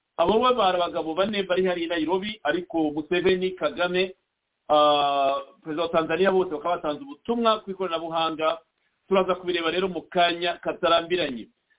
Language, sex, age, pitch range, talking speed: English, male, 50-69, 165-205 Hz, 130 wpm